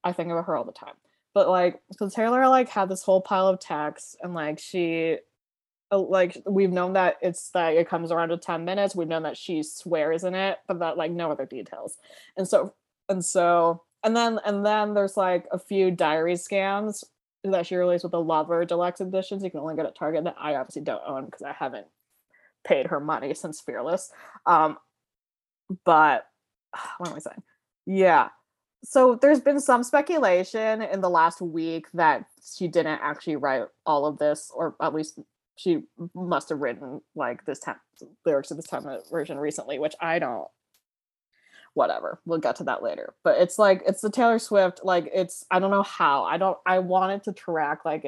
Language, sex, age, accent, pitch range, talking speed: English, female, 20-39, American, 165-195 Hz, 200 wpm